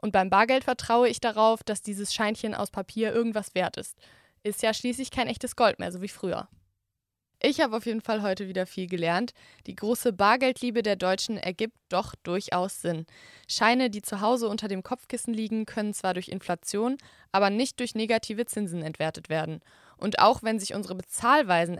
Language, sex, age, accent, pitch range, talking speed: English, female, 20-39, German, 185-235 Hz, 185 wpm